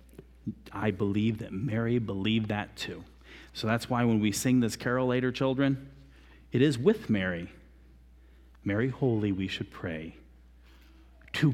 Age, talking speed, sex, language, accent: 40-59, 140 wpm, male, English, American